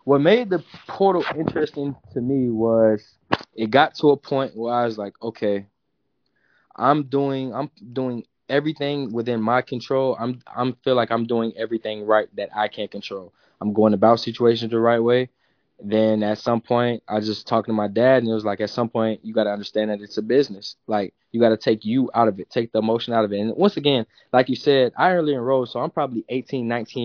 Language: English